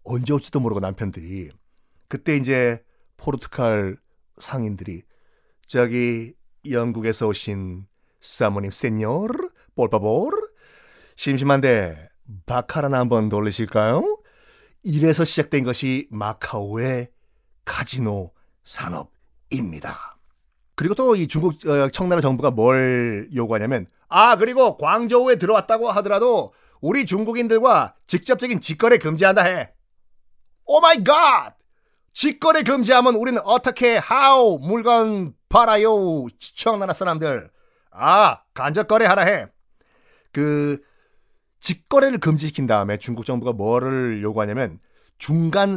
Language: Korean